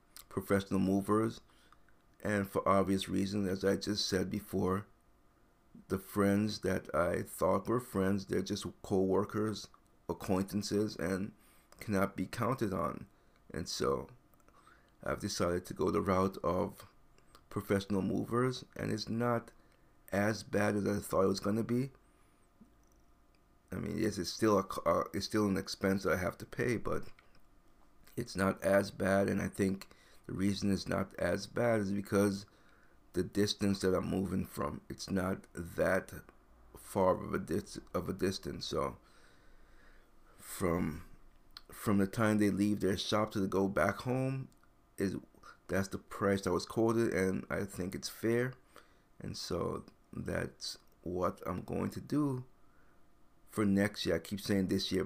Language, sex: English, male